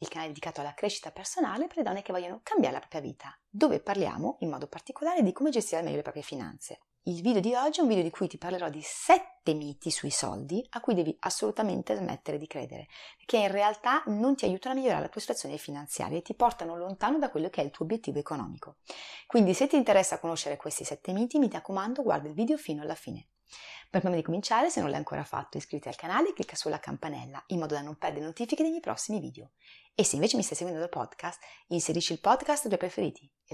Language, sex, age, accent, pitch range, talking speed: Italian, female, 30-49, native, 165-275 Hz, 235 wpm